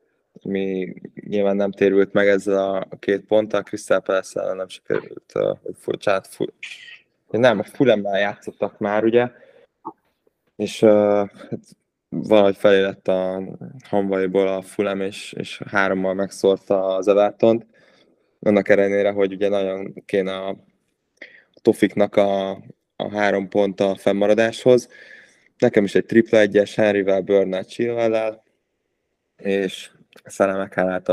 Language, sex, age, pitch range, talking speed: Hungarian, male, 20-39, 95-110 Hz, 120 wpm